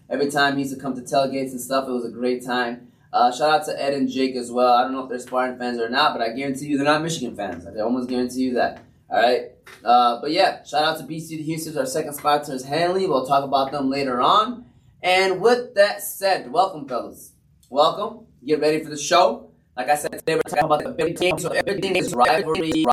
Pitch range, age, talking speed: 130-160 Hz, 20-39, 245 wpm